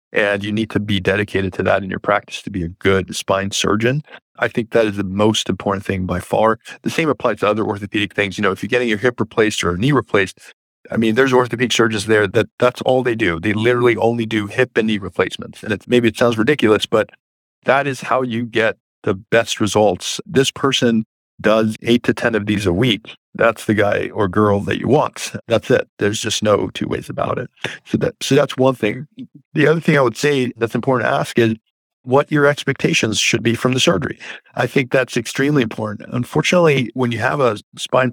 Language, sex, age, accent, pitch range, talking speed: English, male, 50-69, American, 110-130 Hz, 225 wpm